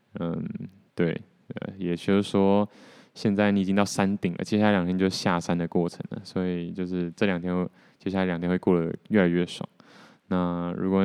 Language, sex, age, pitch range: Chinese, male, 20-39, 90-100 Hz